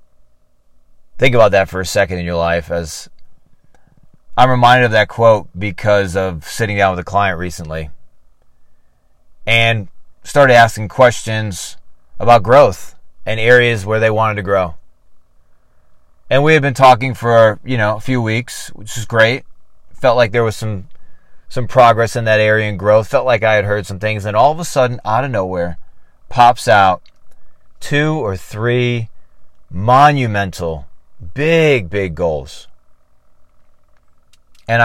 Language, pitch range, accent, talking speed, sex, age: English, 90-115 Hz, American, 150 wpm, male, 30-49